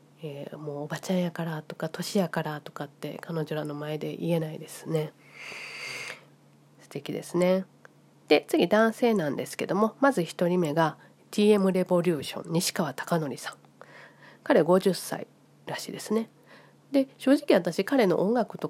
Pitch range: 150-200 Hz